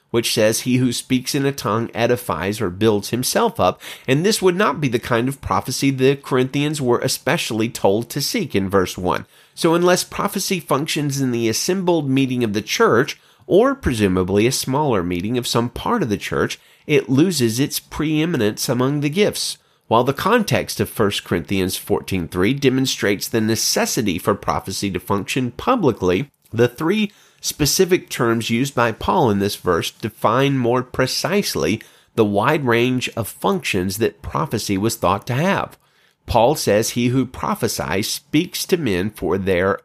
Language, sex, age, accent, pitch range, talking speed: English, male, 30-49, American, 105-145 Hz, 165 wpm